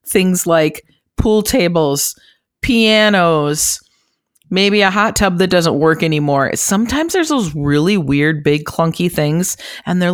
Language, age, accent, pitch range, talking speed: English, 30-49, American, 155-190 Hz, 135 wpm